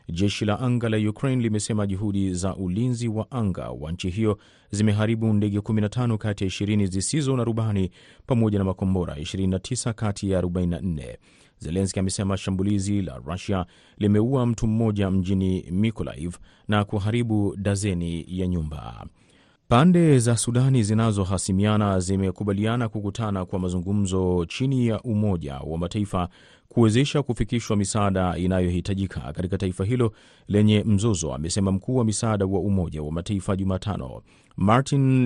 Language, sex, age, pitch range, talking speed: Swahili, male, 30-49, 95-110 Hz, 130 wpm